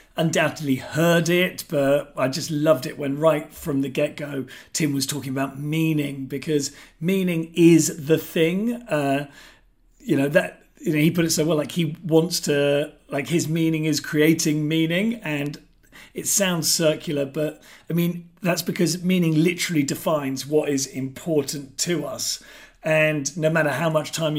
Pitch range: 145-170 Hz